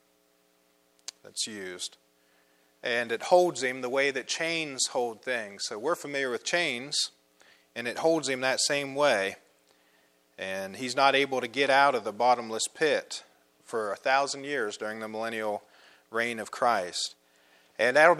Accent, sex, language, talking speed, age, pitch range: American, male, English, 155 wpm, 40-59, 110-150 Hz